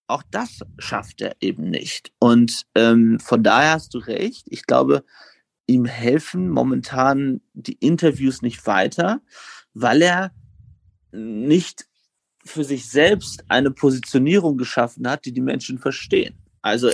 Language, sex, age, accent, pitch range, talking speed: German, male, 40-59, German, 120-180 Hz, 130 wpm